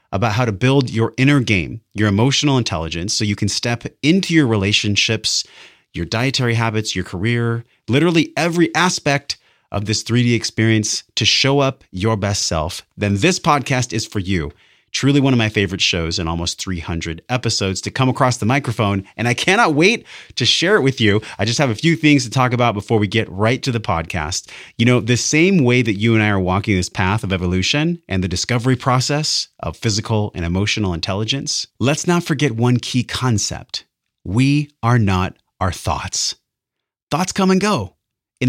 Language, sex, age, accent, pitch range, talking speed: English, male, 30-49, American, 105-135 Hz, 190 wpm